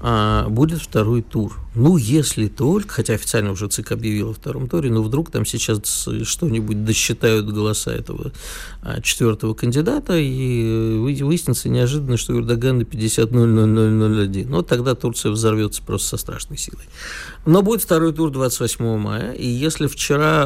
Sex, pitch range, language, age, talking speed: male, 110-140 Hz, Russian, 50-69, 150 wpm